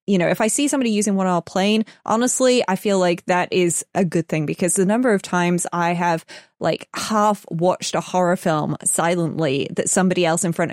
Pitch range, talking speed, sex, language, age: 160-195 Hz, 220 wpm, female, English, 20-39